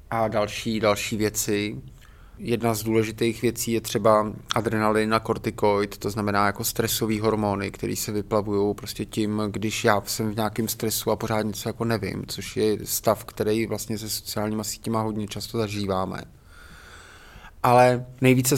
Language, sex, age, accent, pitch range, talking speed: Czech, male, 20-39, native, 105-120 Hz, 150 wpm